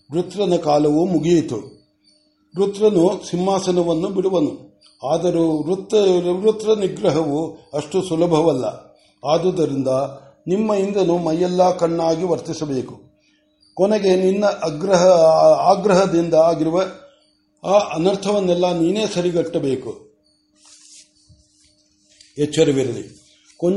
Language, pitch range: Kannada, 145-180 Hz